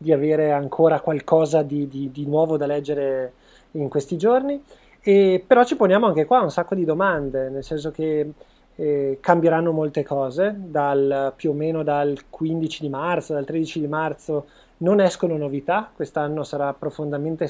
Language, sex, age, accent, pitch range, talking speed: Italian, male, 20-39, native, 140-165 Hz, 165 wpm